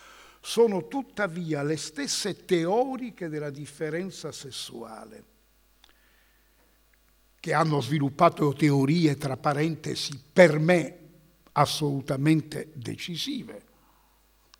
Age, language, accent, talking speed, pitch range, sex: 60-79, Italian, native, 75 wpm, 150-195 Hz, male